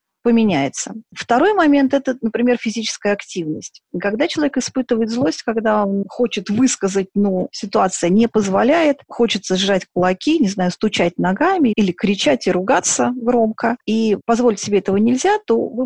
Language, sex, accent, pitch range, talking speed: Russian, female, native, 180-230 Hz, 145 wpm